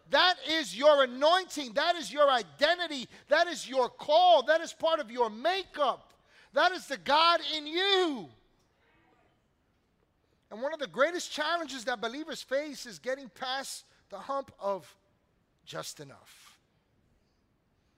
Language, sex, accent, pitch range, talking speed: English, male, American, 205-275 Hz, 135 wpm